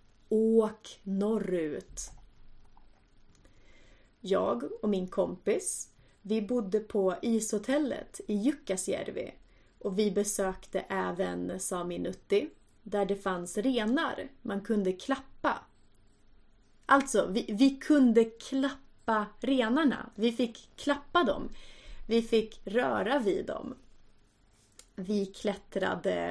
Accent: native